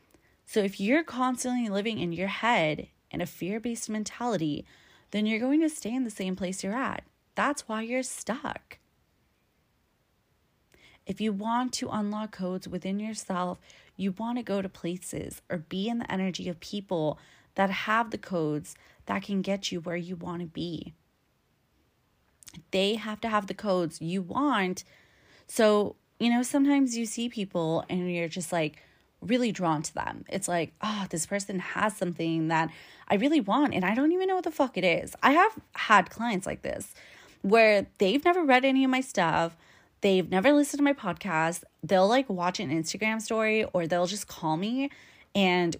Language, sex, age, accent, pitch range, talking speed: English, female, 20-39, American, 180-240 Hz, 180 wpm